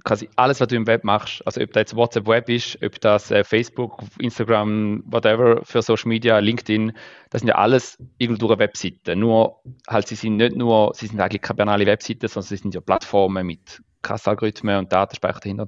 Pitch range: 100-115 Hz